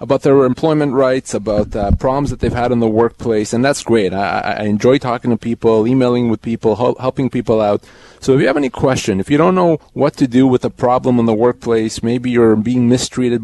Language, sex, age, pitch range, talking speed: English, male, 30-49, 110-135 Hz, 230 wpm